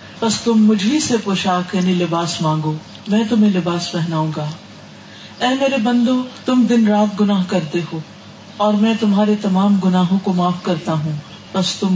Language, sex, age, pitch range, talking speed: Urdu, female, 40-59, 180-225 Hz, 160 wpm